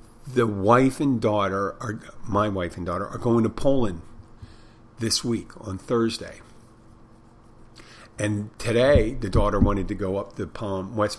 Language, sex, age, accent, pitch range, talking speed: English, male, 50-69, American, 105-120 Hz, 150 wpm